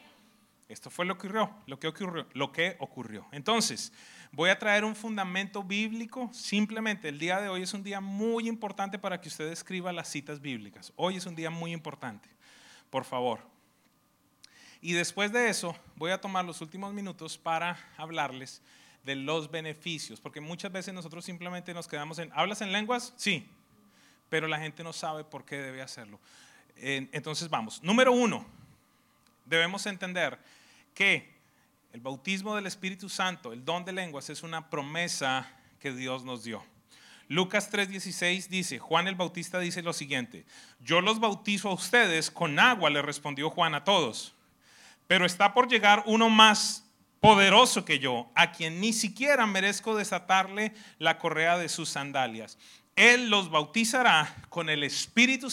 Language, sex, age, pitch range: English, male, 30-49, 150-205 Hz